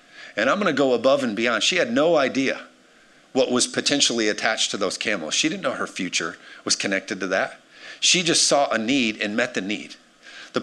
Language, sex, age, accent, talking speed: English, male, 50-69, American, 215 wpm